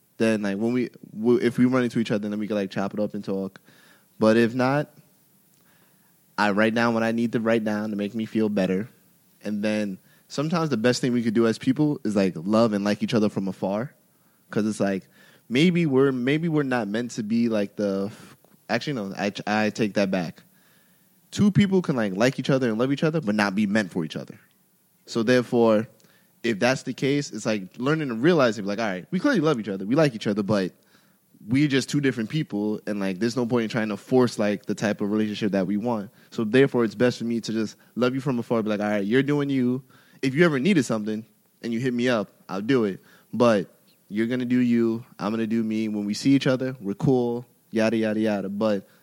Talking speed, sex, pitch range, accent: 235 wpm, male, 105-125 Hz, American